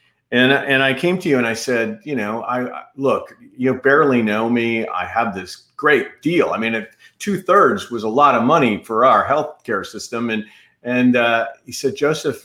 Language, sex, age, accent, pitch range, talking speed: English, male, 40-59, American, 115-140 Hz, 200 wpm